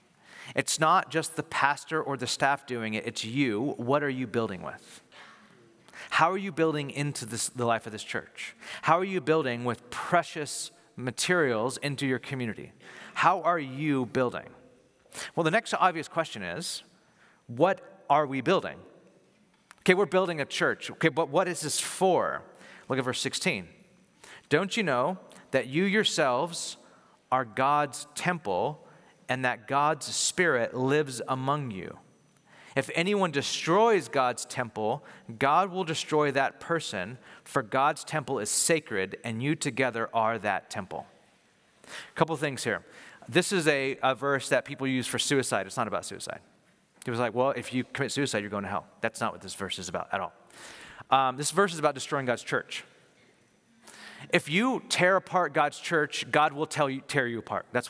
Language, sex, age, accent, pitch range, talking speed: English, male, 40-59, American, 125-160 Hz, 165 wpm